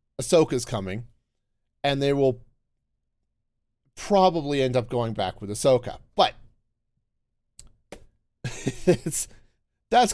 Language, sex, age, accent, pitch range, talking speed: English, male, 40-59, American, 110-140 Hz, 90 wpm